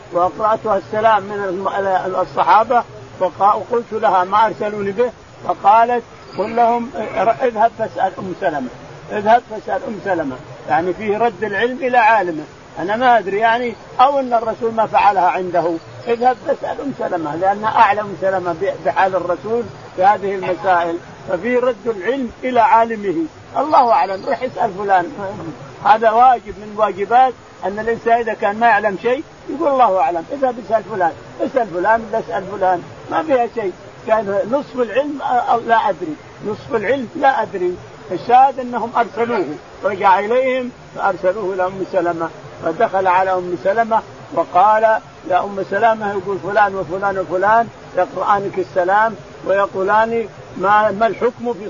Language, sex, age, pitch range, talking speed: Arabic, male, 50-69, 185-235 Hz, 135 wpm